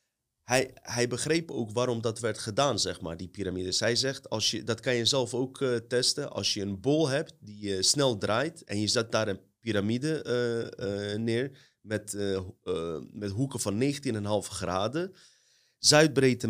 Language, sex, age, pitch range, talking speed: Dutch, male, 30-49, 105-135 Hz, 180 wpm